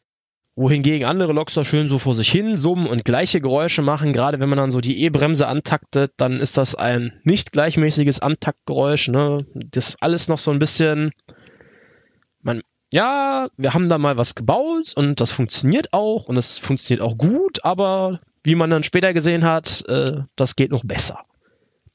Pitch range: 125-160 Hz